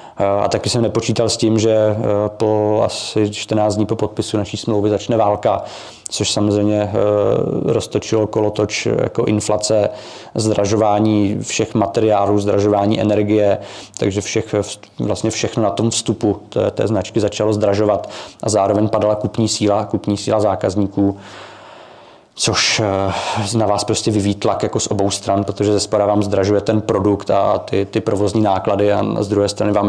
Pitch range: 105-115 Hz